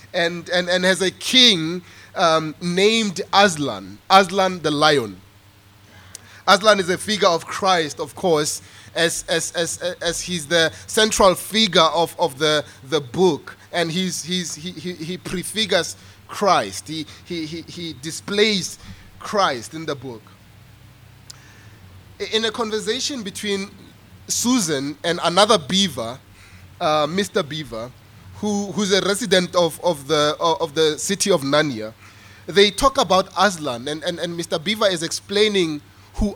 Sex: male